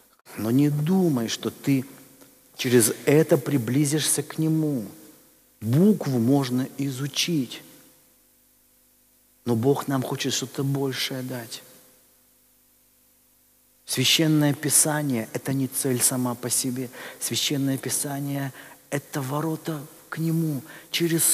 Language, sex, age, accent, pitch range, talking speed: Russian, male, 50-69, native, 135-185 Hz, 100 wpm